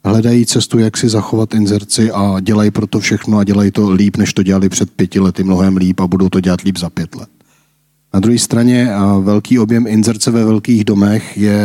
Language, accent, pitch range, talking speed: Czech, native, 100-115 Hz, 205 wpm